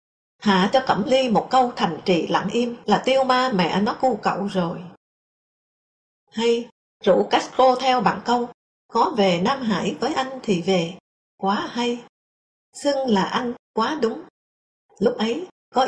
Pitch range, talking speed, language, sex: 190-250 Hz, 160 wpm, English, female